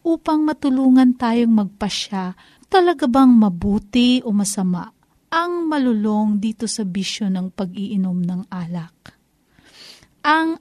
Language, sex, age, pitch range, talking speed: Filipino, female, 40-59, 210-270 Hz, 105 wpm